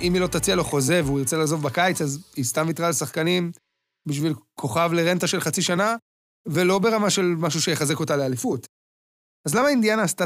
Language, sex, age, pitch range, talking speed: Hebrew, male, 20-39, 150-210 Hz, 165 wpm